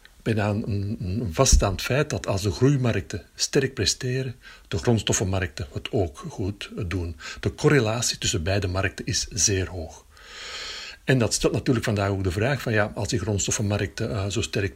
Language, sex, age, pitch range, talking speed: Dutch, male, 60-79, 95-120 Hz, 165 wpm